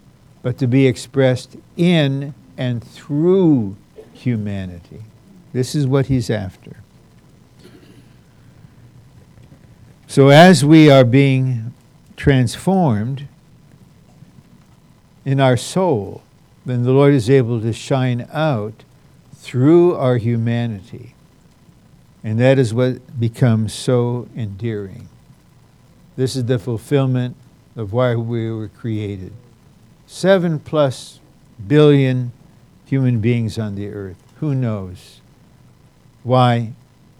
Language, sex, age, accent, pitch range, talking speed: English, male, 60-79, American, 115-140 Hz, 95 wpm